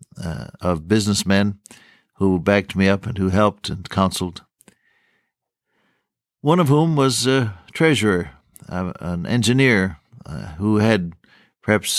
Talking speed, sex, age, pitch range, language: 120 wpm, male, 60-79, 95-125 Hz, English